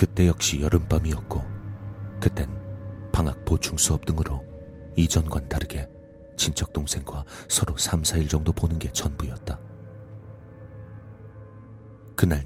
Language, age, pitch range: Korean, 40-59, 75-95 Hz